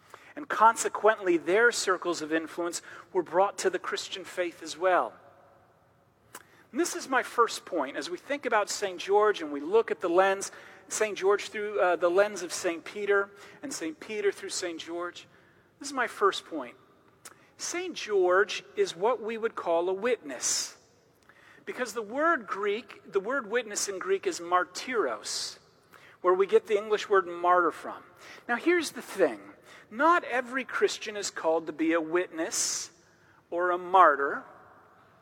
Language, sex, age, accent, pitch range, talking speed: English, male, 40-59, American, 190-300 Hz, 165 wpm